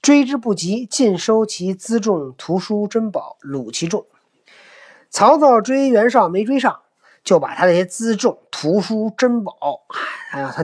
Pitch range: 160-235 Hz